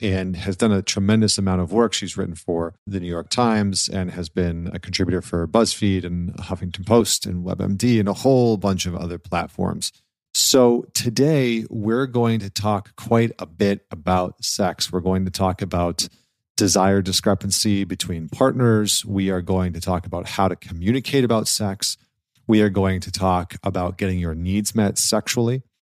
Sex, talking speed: male, 175 wpm